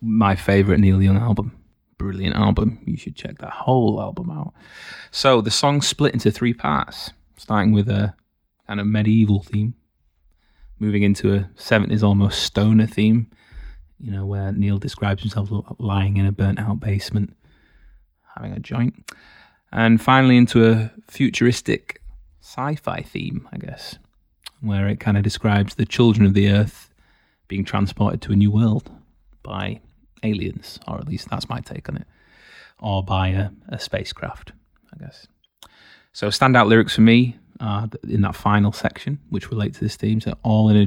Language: English